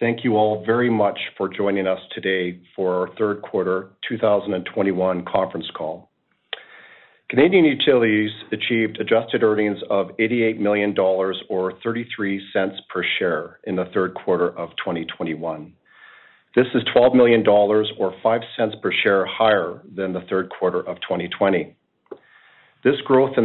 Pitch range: 95-115 Hz